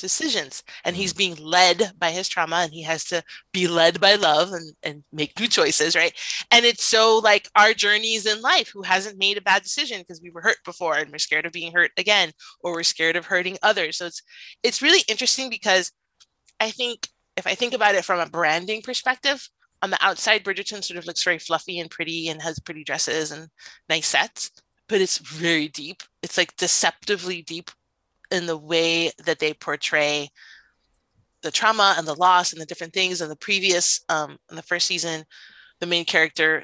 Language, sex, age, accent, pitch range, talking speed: English, female, 30-49, American, 155-210 Hz, 200 wpm